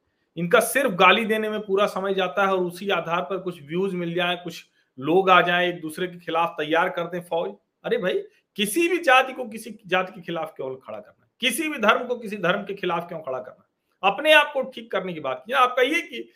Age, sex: 40-59, male